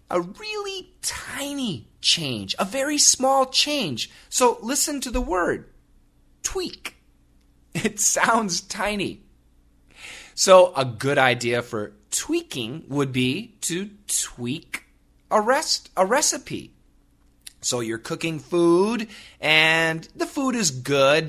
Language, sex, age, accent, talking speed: English, male, 30-49, American, 110 wpm